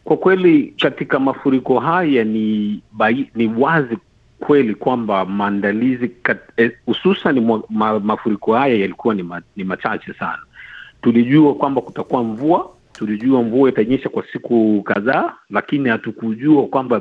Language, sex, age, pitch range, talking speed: Swahili, male, 50-69, 115-150 Hz, 130 wpm